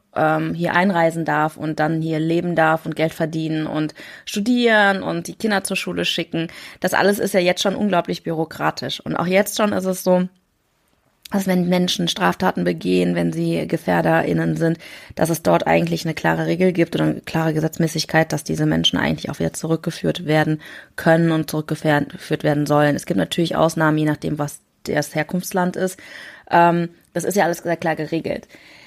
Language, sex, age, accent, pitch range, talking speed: German, female, 20-39, German, 155-180 Hz, 175 wpm